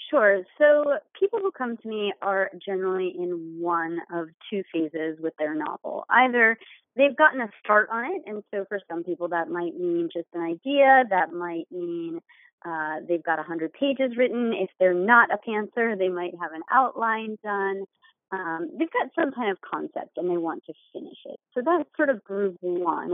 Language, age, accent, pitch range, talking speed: English, 30-49, American, 175-255 Hz, 190 wpm